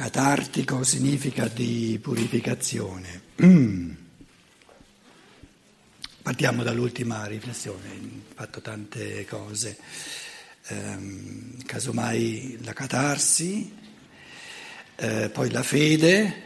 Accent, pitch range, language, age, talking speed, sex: native, 110-175 Hz, Italian, 60-79, 70 wpm, male